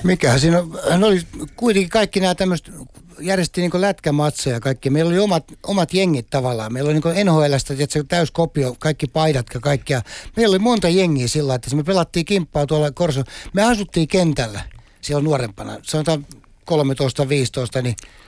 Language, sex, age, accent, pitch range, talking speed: Finnish, male, 60-79, native, 135-180 Hz, 170 wpm